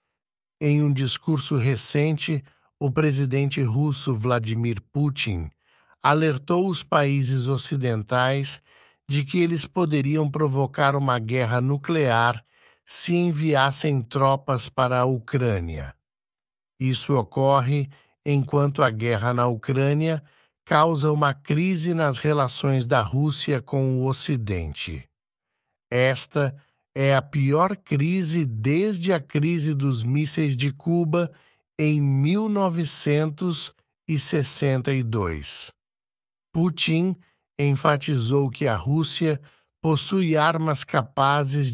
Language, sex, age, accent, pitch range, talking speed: English, male, 60-79, Brazilian, 130-155 Hz, 95 wpm